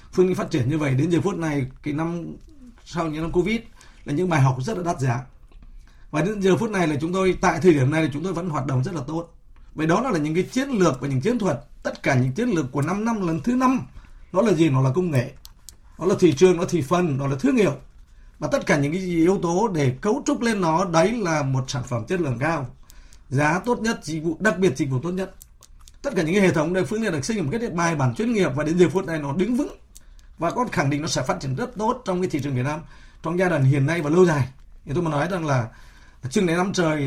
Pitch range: 140-190 Hz